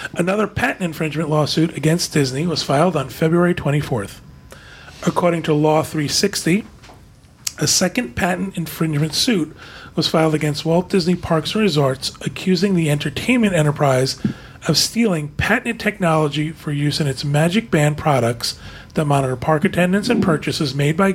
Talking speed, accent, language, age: 145 wpm, American, English, 40-59